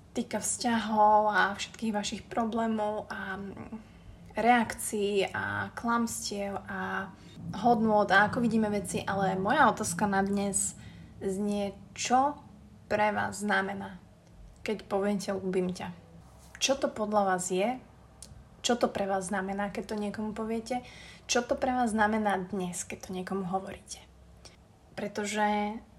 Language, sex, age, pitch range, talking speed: Slovak, female, 20-39, 190-220 Hz, 125 wpm